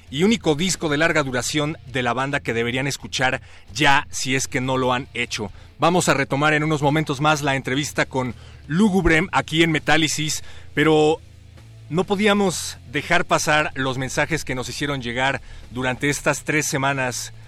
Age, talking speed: 30-49, 170 wpm